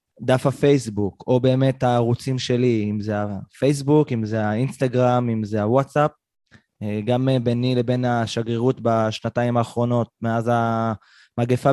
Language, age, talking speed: Hebrew, 20-39, 120 wpm